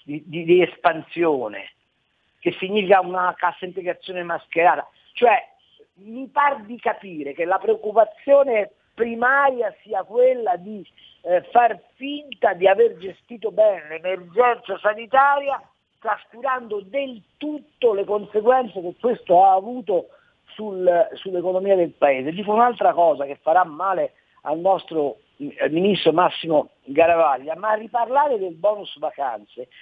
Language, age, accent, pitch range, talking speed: Italian, 50-69, native, 175-240 Hz, 125 wpm